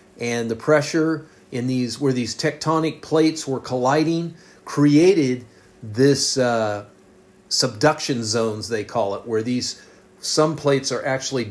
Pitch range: 115-155 Hz